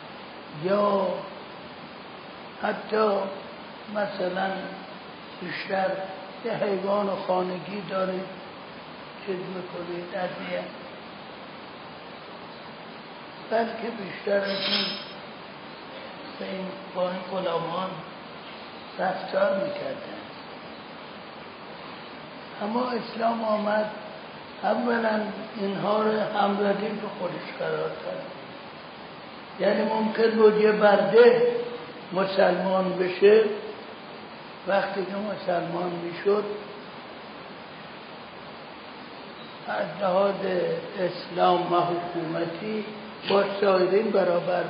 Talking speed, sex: 65 wpm, male